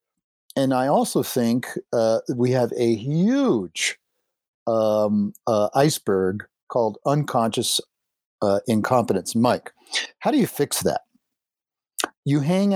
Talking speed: 115 wpm